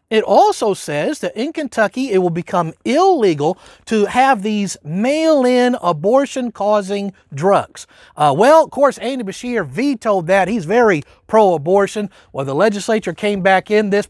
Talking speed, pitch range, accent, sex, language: 145 wpm, 195-275 Hz, American, male, English